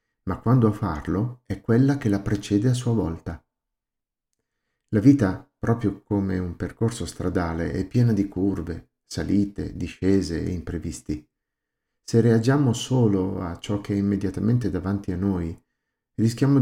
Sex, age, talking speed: male, 50-69, 140 wpm